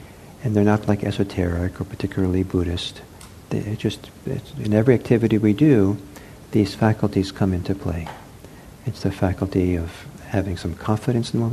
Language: English